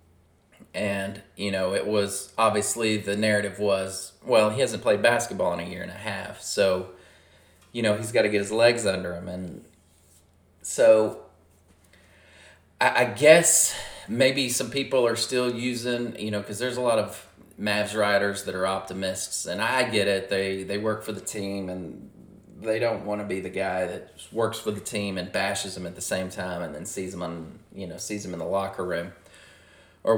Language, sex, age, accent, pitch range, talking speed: English, male, 30-49, American, 90-110 Hz, 195 wpm